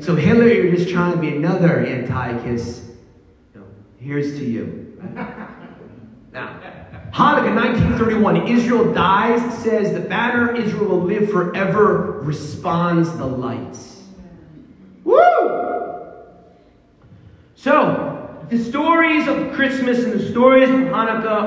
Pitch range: 195-250 Hz